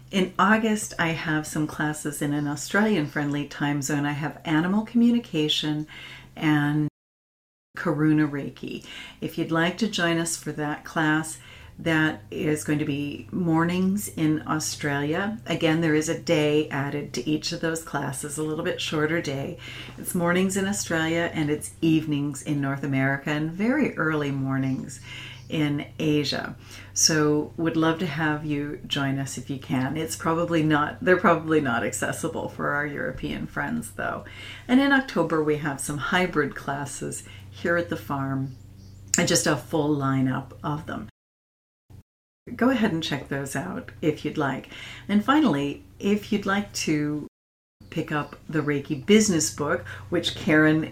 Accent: American